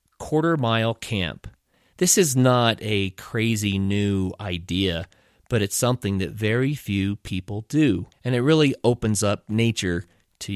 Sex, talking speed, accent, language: male, 140 wpm, American, English